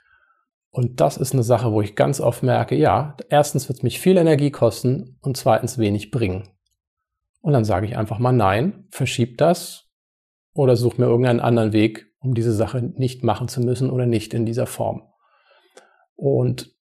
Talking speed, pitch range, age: 180 wpm, 115-135 Hz, 40-59